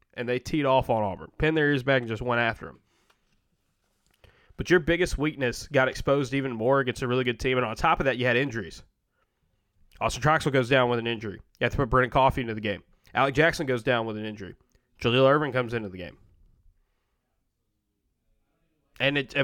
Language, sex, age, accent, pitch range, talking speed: English, male, 20-39, American, 120-145 Hz, 210 wpm